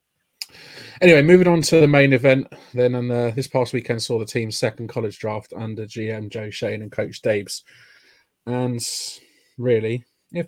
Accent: British